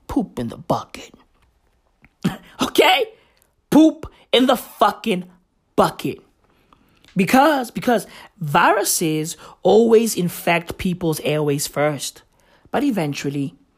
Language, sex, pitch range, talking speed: English, male, 150-240 Hz, 85 wpm